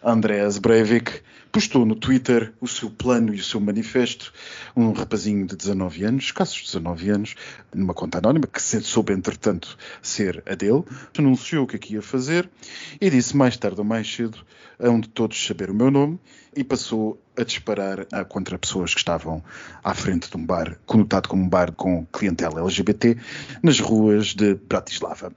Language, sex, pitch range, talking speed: Portuguese, male, 100-130 Hz, 175 wpm